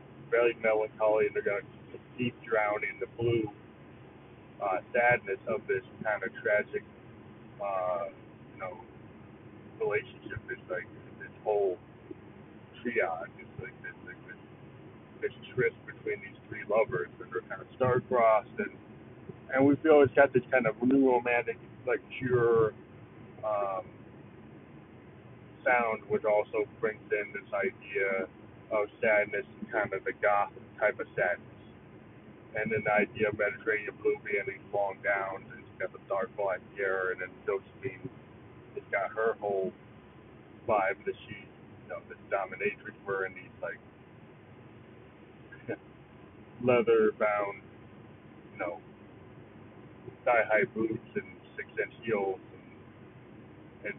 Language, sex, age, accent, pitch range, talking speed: English, male, 40-59, American, 105-135 Hz, 135 wpm